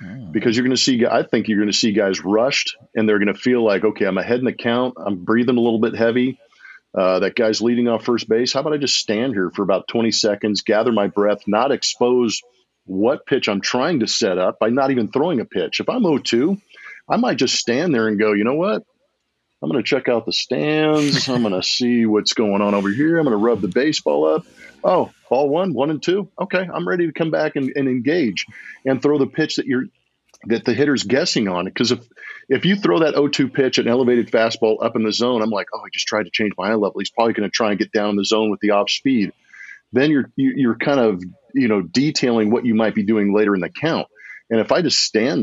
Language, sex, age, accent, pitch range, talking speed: English, male, 40-59, American, 105-135 Hz, 250 wpm